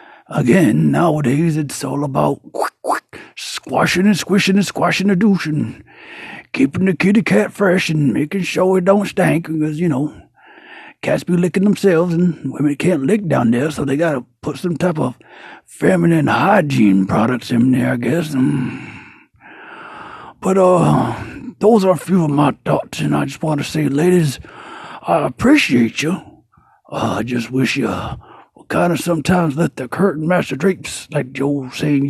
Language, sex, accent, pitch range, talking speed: English, male, American, 135-195 Hz, 165 wpm